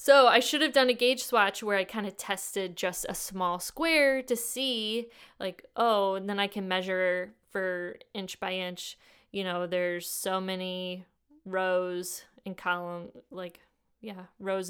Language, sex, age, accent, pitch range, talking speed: English, female, 20-39, American, 185-235 Hz, 165 wpm